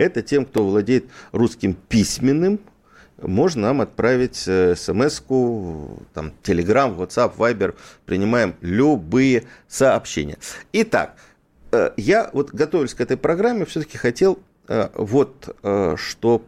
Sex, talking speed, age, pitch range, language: male, 100 wpm, 50-69, 90-130 Hz, Russian